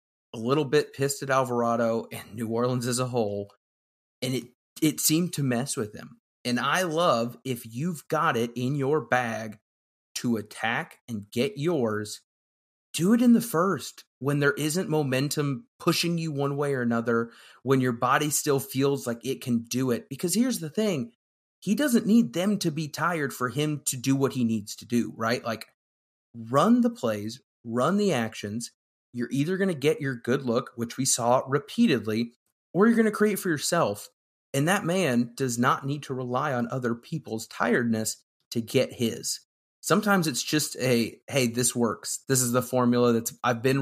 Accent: American